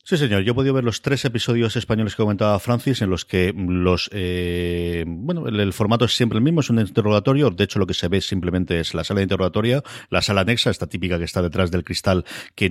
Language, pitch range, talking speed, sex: Spanish, 90-110 Hz, 245 wpm, male